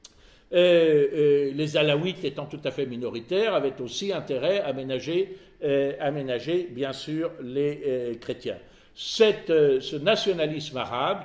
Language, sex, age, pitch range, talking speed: French, male, 60-79, 130-170 Hz, 135 wpm